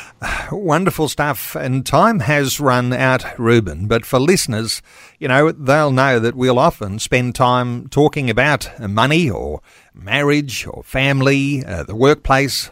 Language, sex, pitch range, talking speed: English, male, 120-145 Hz, 140 wpm